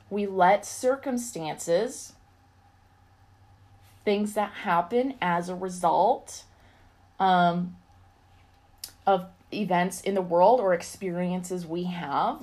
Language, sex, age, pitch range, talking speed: English, female, 20-39, 170-210 Hz, 90 wpm